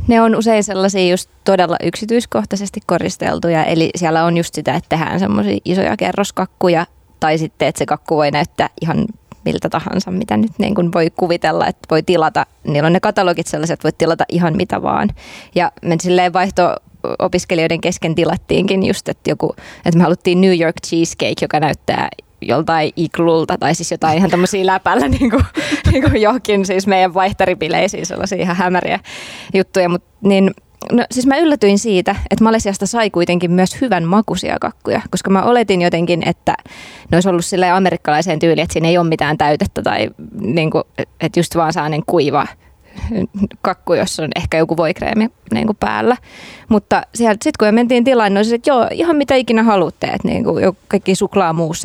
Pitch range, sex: 165-200 Hz, female